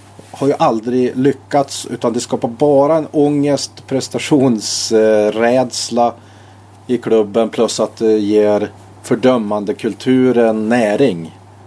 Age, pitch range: 30-49, 100-125 Hz